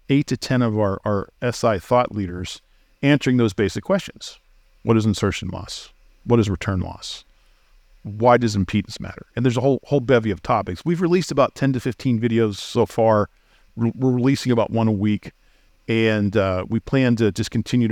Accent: American